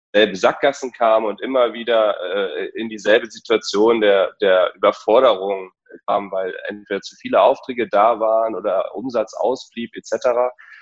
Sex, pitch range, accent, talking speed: male, 105-130 Hz, German, 135 wpm